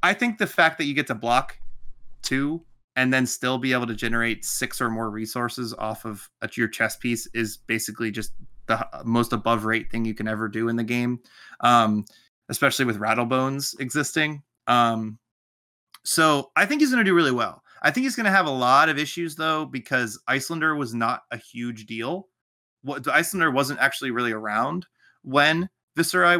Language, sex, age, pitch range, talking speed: English, male, 20-39, 115-140 Hz, 180 wpm